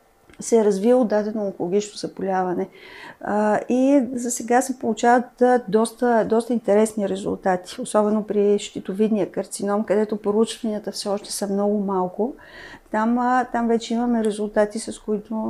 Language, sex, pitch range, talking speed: Bulgarian, female, 205-245 Hz, 130 wpm